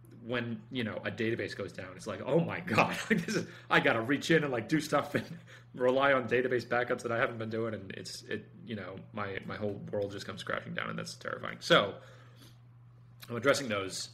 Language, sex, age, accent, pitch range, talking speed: English, male, 30-49, American, 105-120 Hz, 210 wpm